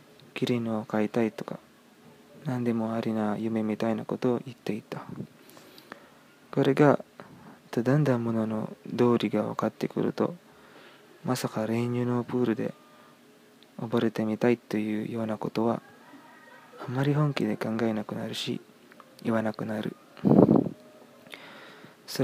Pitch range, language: 115-135 Hz, Japanese